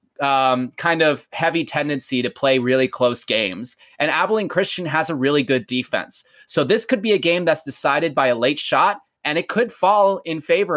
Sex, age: male, 30-49